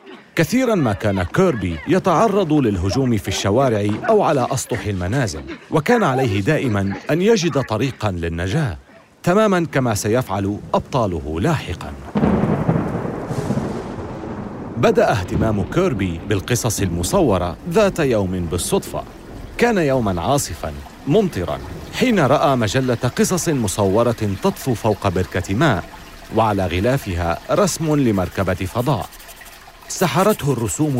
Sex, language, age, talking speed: male, Arabic, 40-59, 100 wpm